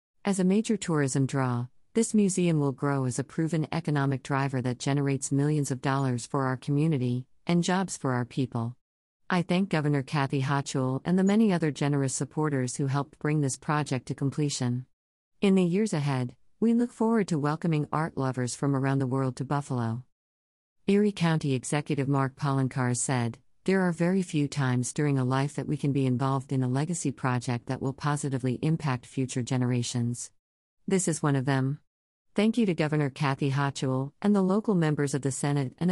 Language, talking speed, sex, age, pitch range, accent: English, 185 wpm, female, 50-69, 130-155 Hz, American